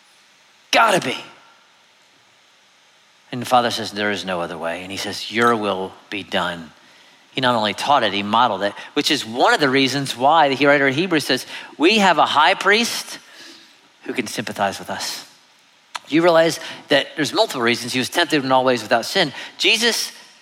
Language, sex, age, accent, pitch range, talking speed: English, male, 40-59, American, 135-215 Hz, 185 wpm